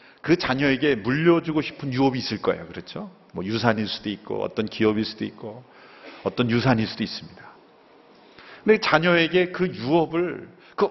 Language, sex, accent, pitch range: Korean, male, native, 170-220 Hz